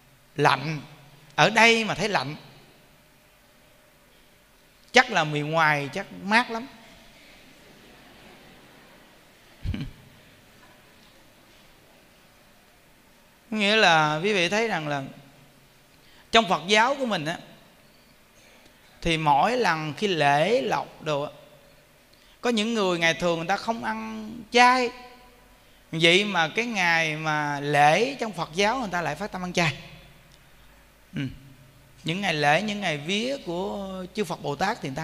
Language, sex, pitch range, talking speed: Vietnamese, male, 145-225 Hz, 125 wpm